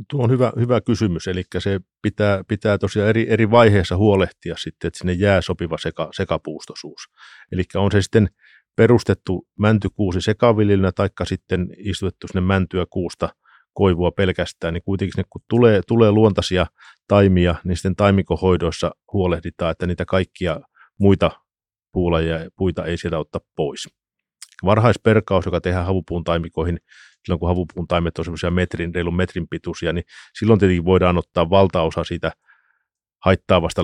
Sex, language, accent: male, Finnish, native